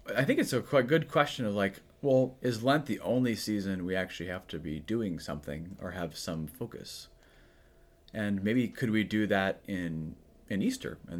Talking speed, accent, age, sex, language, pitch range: 195 wpm, American, 30-49, male, English, 85-125 Hz